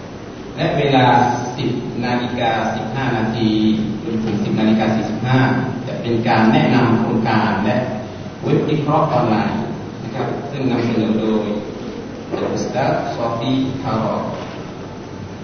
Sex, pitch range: male, 115-130 Hz